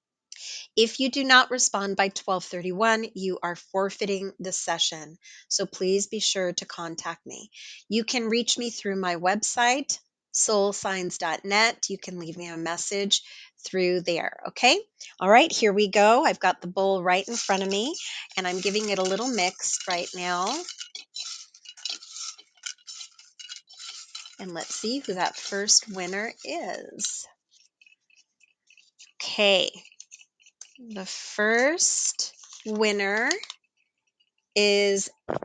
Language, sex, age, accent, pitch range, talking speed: English, female, 40-59, American, 185-245 Hz, 120 wpm